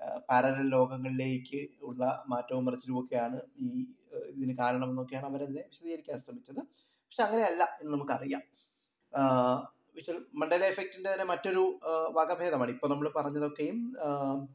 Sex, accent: male, native